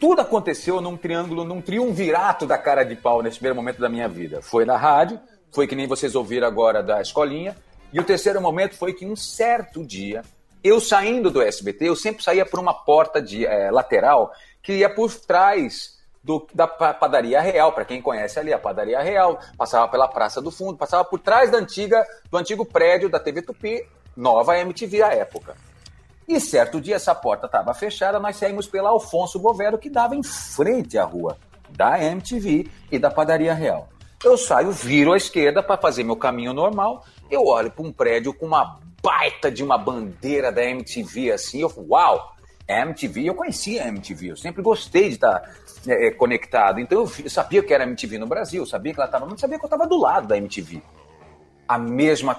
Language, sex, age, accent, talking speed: Portuguese, male, 40-59, Brazilian, 195 wpm